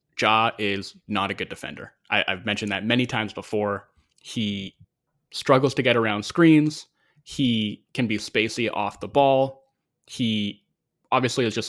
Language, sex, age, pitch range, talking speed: English, male, 20-39, 105-125 Hz, 155 wpm